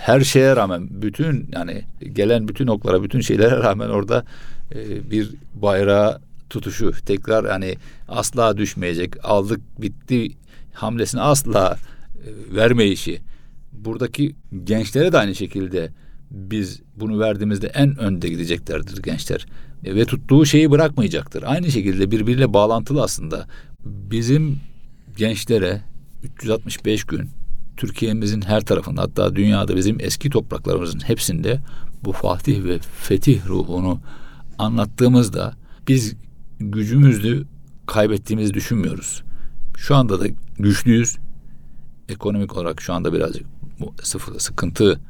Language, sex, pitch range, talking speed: Turkish, male, 100-125 Hz, 105 wpm